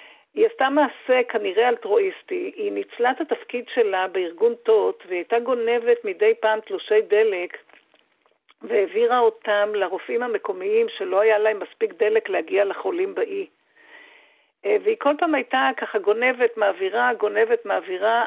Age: 50-69